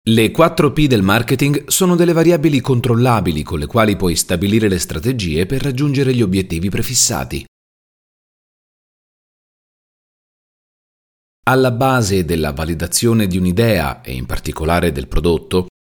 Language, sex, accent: Italian, male, native